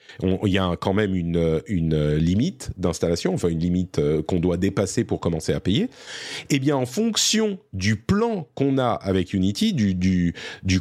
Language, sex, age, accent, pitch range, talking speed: French, male, 40-59, French, 100-155 Hz, 170 wpm